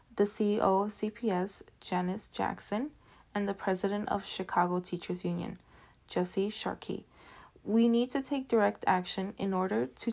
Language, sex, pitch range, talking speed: English, female, 185-220 Hz, 140 wpm